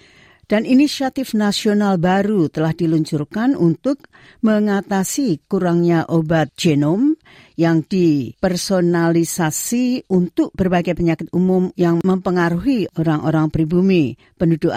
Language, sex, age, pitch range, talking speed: Indonesian, female, 50-69, 155-190 Hz, 90 wpm